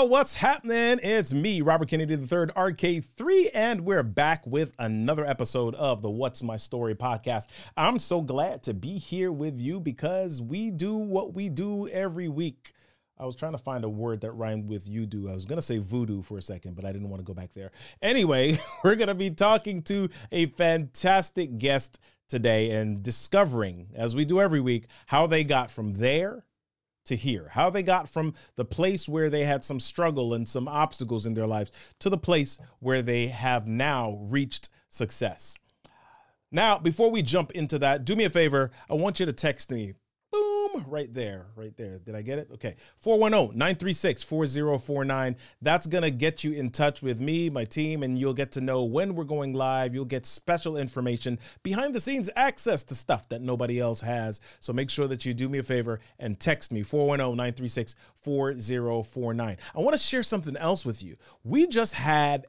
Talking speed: 190 wpm